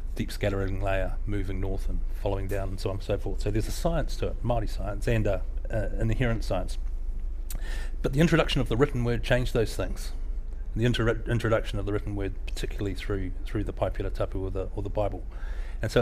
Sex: male